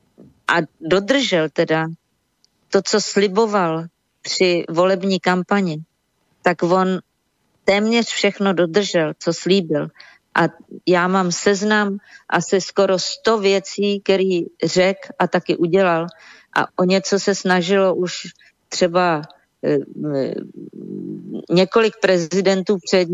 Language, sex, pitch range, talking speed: Czech, female, 170-190 Hz, 100 wpm